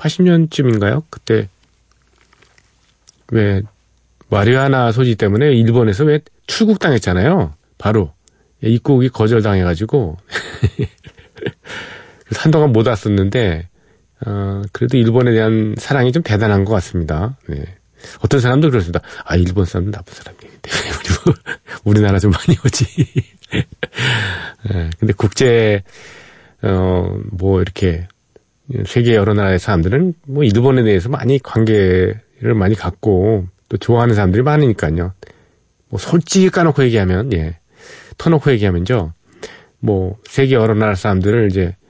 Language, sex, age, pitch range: Korean, male, 40-59, 95-125 Hz